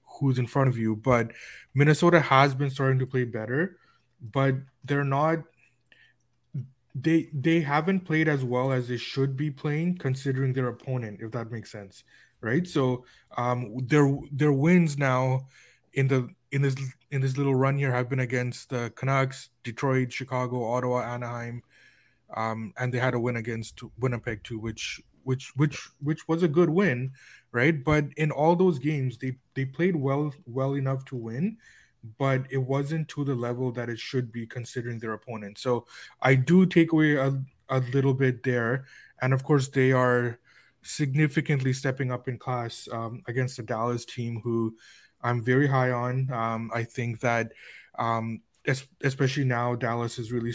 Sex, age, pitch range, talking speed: male, 20-39, 120-140 Hz, 170 wpm